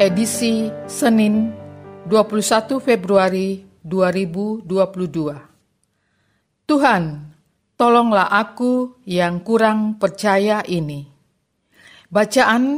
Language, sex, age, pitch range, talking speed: Indonesian, female, 40-59, 170-220 Hz, 60 wpm